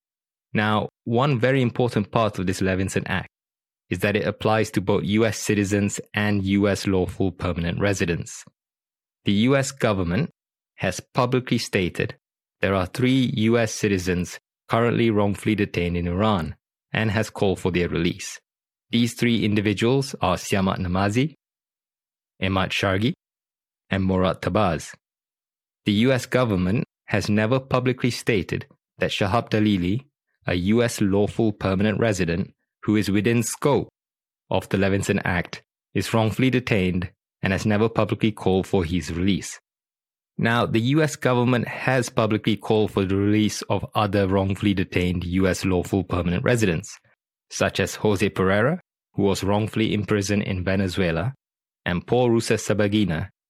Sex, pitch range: male, 95-115 Hz